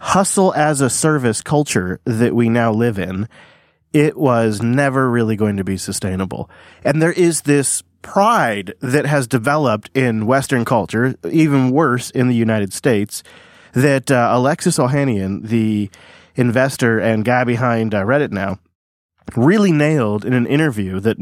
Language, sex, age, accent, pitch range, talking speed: English, male, 30-49, American, 105-140 Hz, 140 wpm